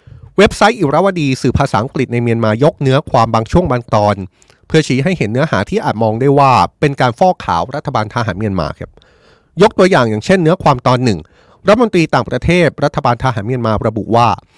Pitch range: 120-165 Hz